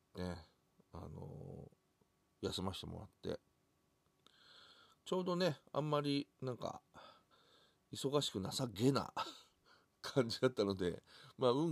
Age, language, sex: 40-59, Japanese, male